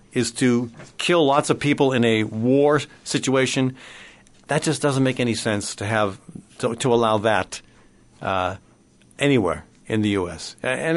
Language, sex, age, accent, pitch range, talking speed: English, male, 50-69, American, 115-165 Hz, 155 wpm